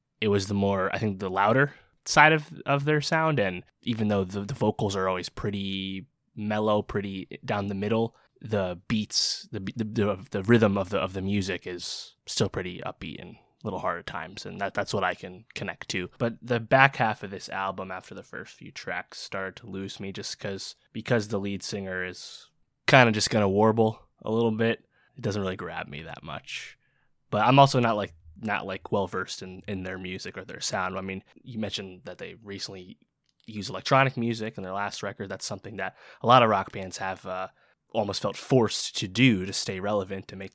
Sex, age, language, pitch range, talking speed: male, 20-39, English, 95-115 Hz, 210 wpm